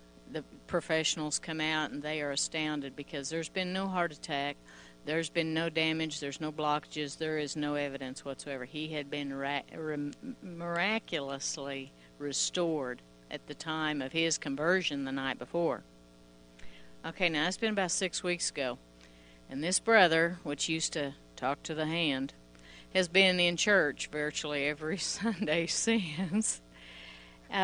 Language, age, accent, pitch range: English, 50-69, American, 135-165 Hz